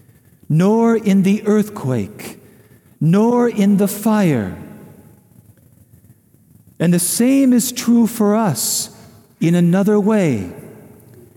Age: 50-69